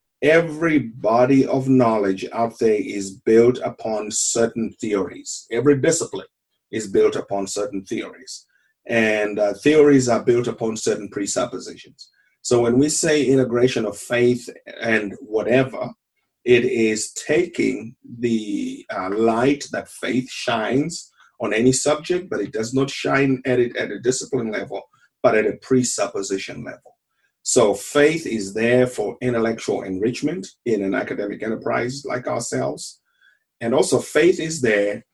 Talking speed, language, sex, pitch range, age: 140 wpm, English, male, 115-140 Hz, 30-49